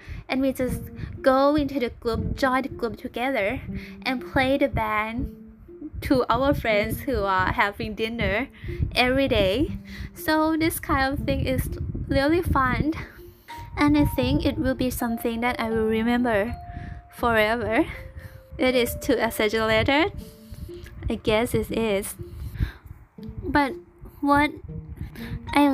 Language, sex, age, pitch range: Thai, female, 10-29, 225-280 Hz